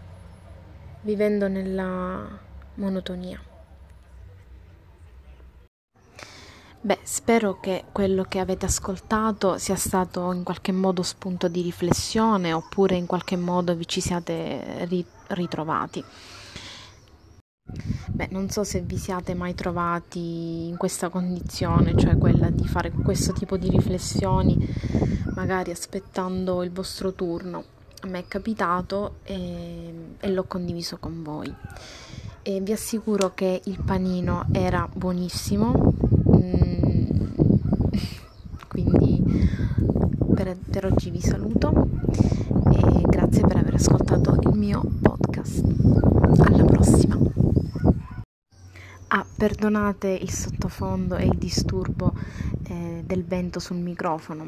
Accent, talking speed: native, 100 wpm